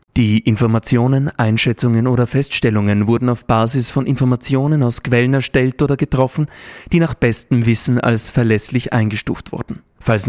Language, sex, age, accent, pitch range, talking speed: German, male, 30-49, German, 115-130 Hz, 140 wpm